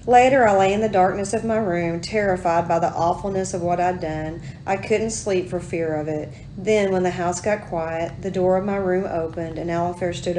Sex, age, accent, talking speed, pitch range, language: female, 40-59, American, 225 wpm, 160-205 Hz, English